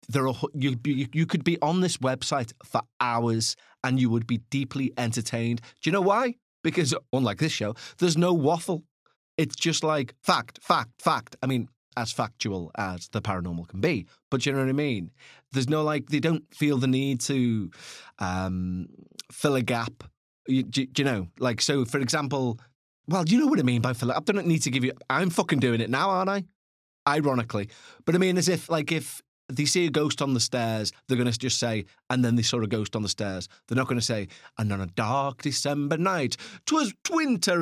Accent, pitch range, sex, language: British, 115-160 Hz, male, English